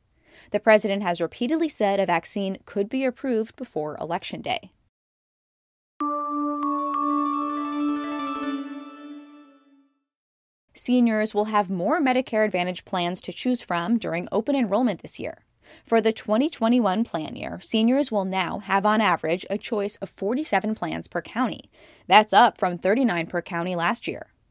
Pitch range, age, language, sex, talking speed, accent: 180-245 Hz, 10-29, English, female, 130 wpm, American